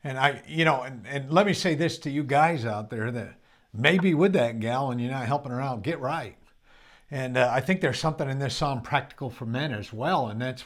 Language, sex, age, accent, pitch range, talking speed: English, male, 50-69, American, 115-150 Hz, 250 wpm